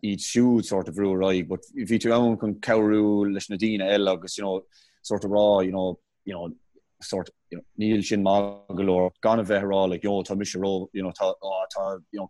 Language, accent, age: English, Irish, 20-39